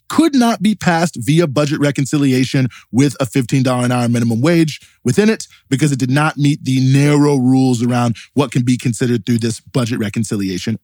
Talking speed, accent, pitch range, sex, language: 185 wpm, American, 125-165 Hz, male, English